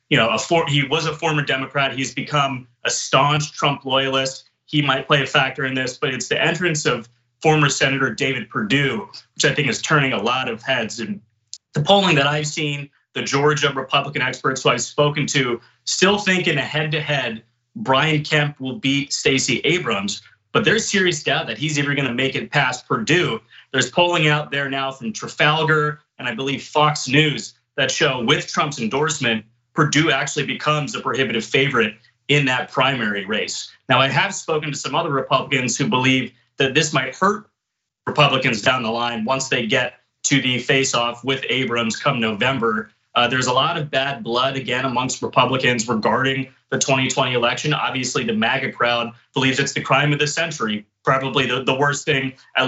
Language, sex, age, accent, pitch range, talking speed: English, male, 30-49, American, 125-150 Hz, 190 wpm